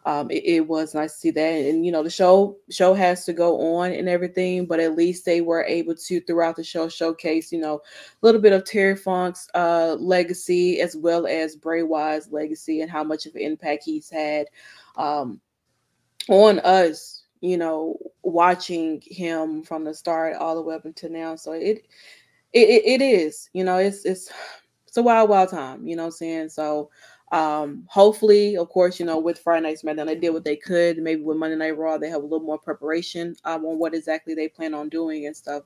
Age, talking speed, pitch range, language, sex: 20-39, 215 wpm, 155-185 Hz, English, female